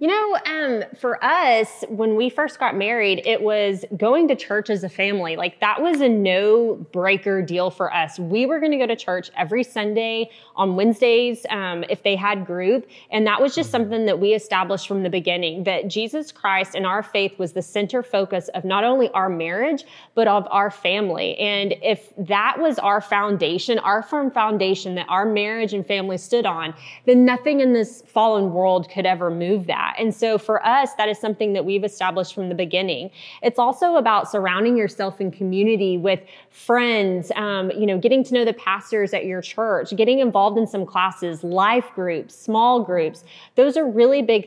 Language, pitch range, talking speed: English, 190-235 Hz, 195 wpm